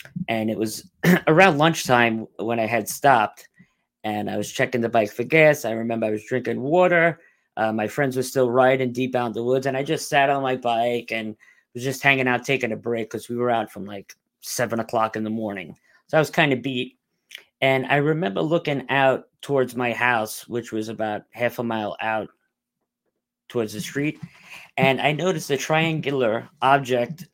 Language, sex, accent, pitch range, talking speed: English, male, American, 115-145 Hz, 200 wpm